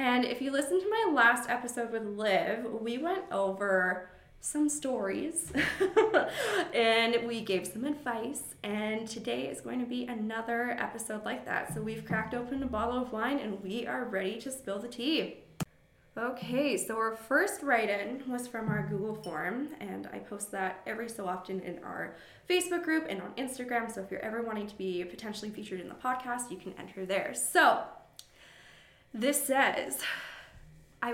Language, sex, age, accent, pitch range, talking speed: English, female, 20-39, American, 205-270 Hz, 170 wpm